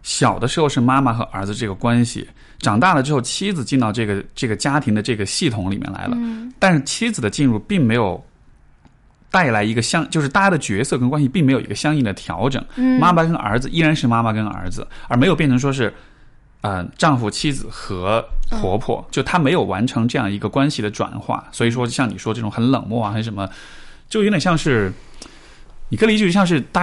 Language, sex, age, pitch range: Chinese, male, 20-39, 110-155 Hz